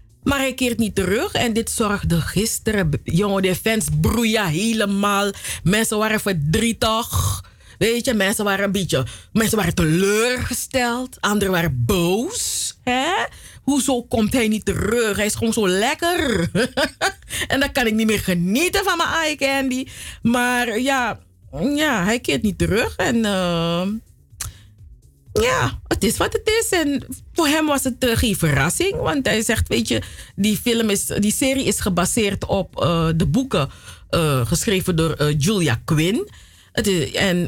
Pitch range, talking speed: 170-245 Hz, 160 wpm